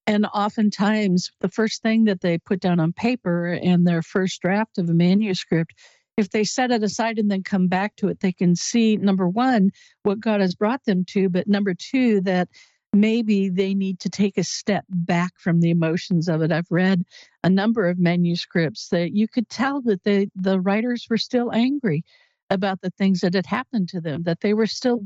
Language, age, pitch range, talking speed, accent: English, 60-79, 180-220 Hz, 205 wpm, American